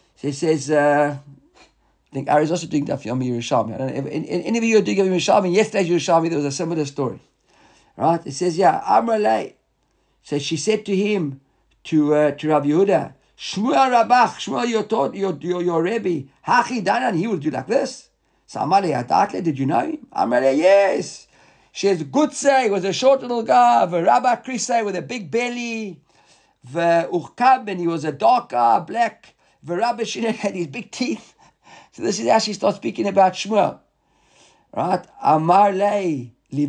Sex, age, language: male, 50-69, English